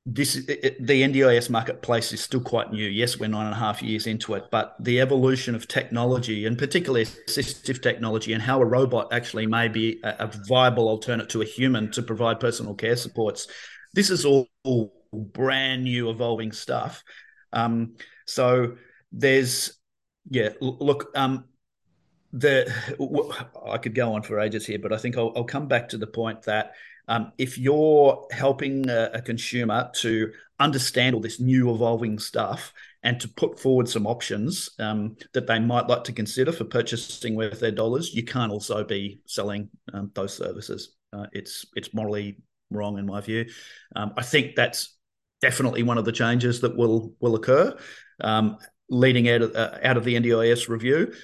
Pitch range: 110-125 Hz